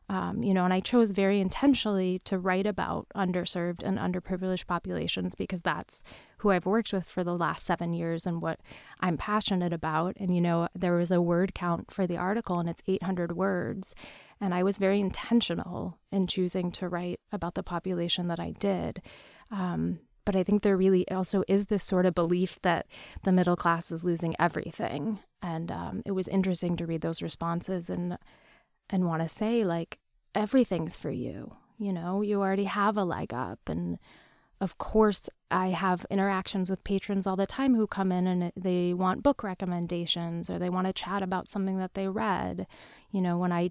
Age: 20-39